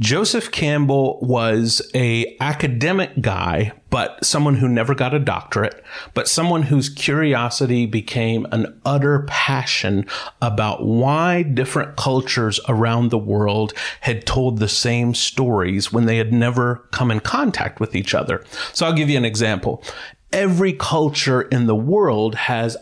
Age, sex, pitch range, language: 40-59, male, 115-145 Hz, English